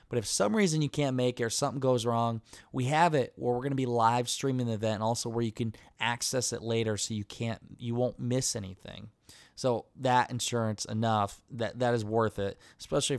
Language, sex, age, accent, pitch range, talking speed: English, male, 20-39, American, 110-130 Hz, 225 wpm